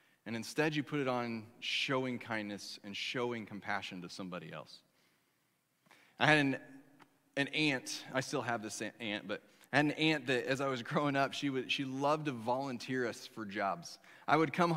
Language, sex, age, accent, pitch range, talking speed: English, male, 30-49, American, 145-195 Hz, 190 wpm